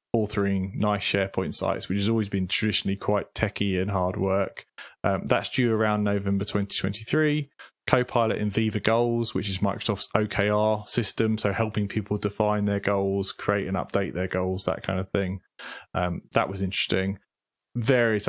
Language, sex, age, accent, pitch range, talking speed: English, male, 20-39, British, 95-110 Hz, 160 wpm